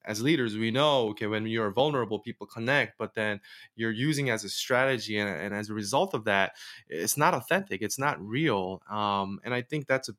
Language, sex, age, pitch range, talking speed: English, male, 20-39, 115-150 Hz, 210 wpm